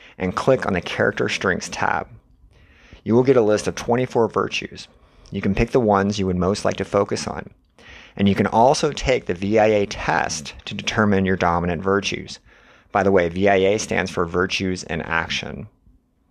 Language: English